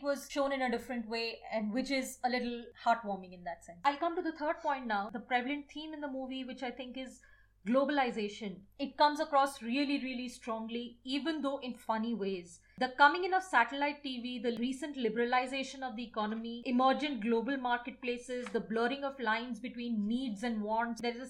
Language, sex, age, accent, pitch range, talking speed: English, female, 30-49, Indian, 230-285 Hz, 195 wpm